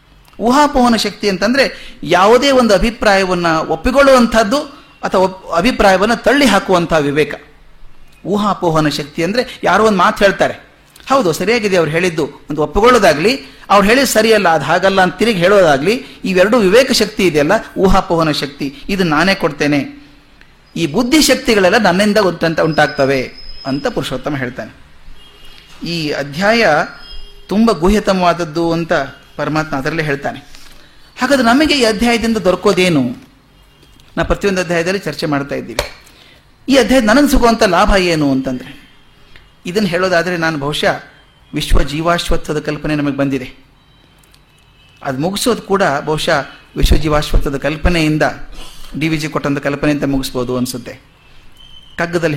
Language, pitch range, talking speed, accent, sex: Kannada, 145-210 Hz, 115 wpm, native, male